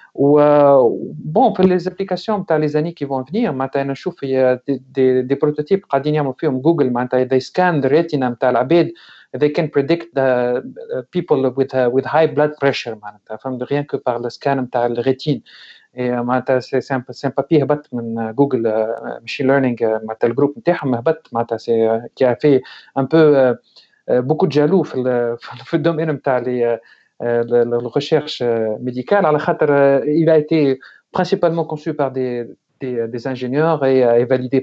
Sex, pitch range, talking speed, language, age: male, 125-155 Hz, 135 wpm, English, 40-59